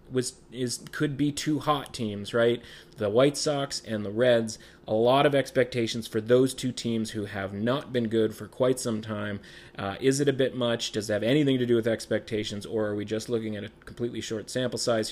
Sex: male